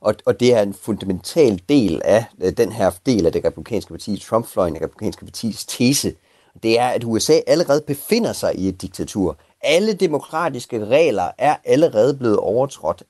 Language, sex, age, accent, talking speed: Danish, male, 30-49, native, 160 wpm